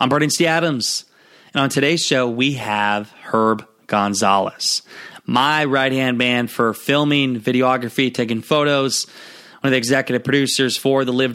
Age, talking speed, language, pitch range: 20-39, 150 wpm, English, 125-150 Hz